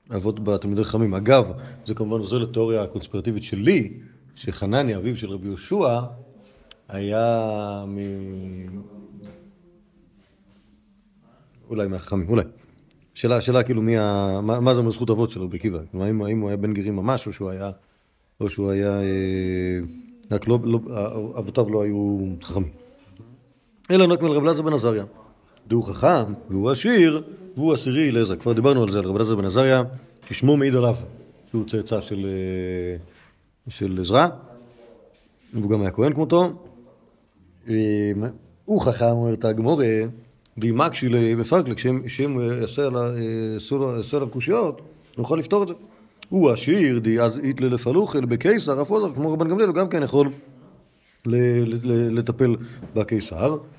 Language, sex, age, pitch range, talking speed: Hebrew, male, 40-59, 105-135 Hz, 140 wpm